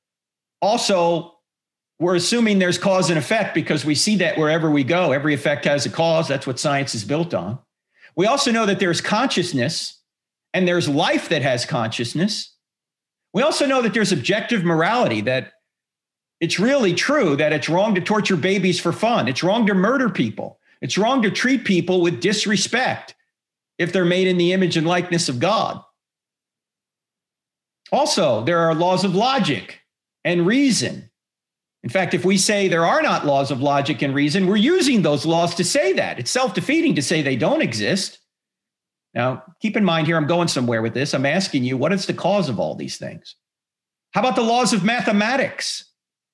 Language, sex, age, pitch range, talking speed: English, male, 50-69, 145-195 Hz, 180 wpm